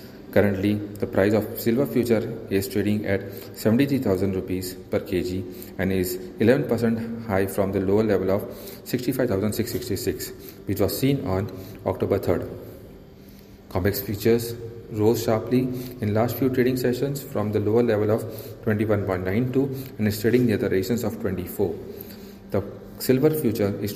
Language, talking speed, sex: English, 160 wpm, male